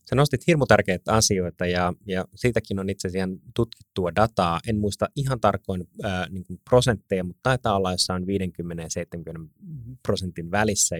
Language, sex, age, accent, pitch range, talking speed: Finnish, male, 30-49, native, 90-115 Hz, 155 wpm